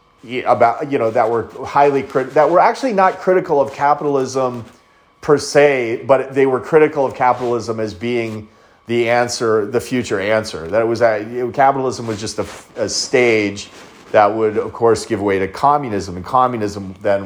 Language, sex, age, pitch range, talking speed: English, male, 30-49, 105-140 Hz, 175 wpm